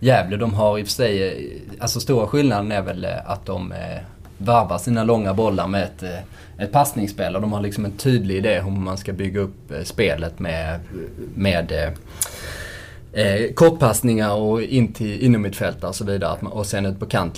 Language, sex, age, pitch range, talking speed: Swedish, male, 20-39, 100-120 Hz, 180 wpm